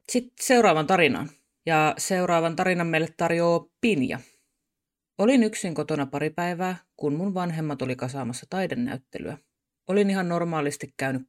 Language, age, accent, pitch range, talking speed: Finnish, 30-49, native, 135-185 Hz, 130 wpm